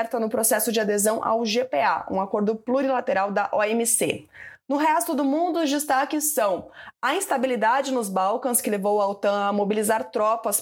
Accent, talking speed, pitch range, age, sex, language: Brazilian, 165 wpm, 220-275 Hz, 20-39, female, Portuguese